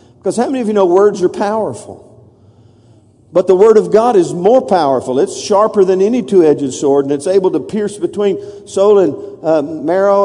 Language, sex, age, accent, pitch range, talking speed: English, male, 50-69, American, 160-215 Hz, 195 wpm